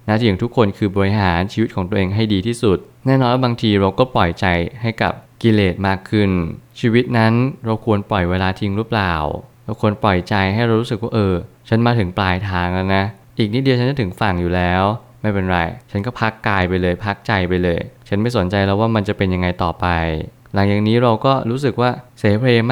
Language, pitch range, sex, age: Thai, 95-115 Hz, male, 20-39